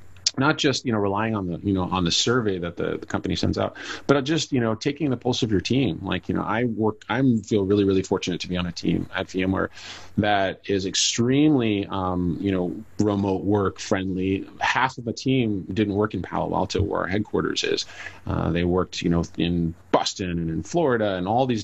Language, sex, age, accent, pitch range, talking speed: English, male, 30-49, American, 90-110 Hz, 220 wpm